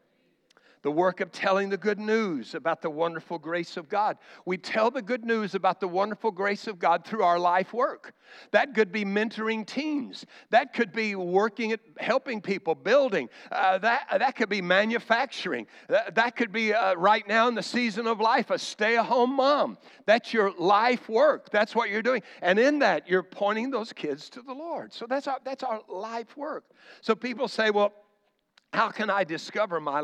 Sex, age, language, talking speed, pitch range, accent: male, 60-79, English, 190 wpm, 190-230 Hz, American